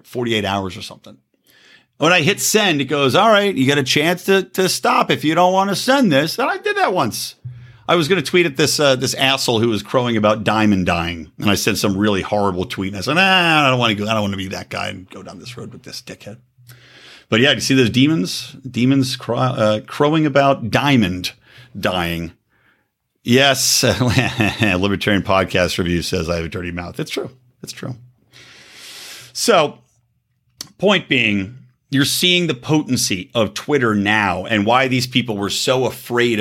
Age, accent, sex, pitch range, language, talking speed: 50-69, American, male, 100-140 Hz, English, 200 wpm